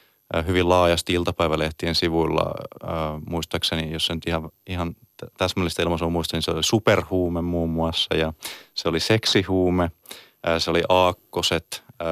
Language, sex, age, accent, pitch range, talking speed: Finnish, male, 30-49, native, 80-90 Hz, 120 wpm